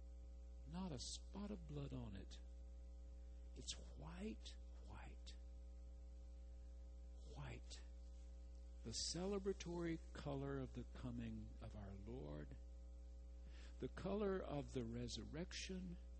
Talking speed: 95 wpm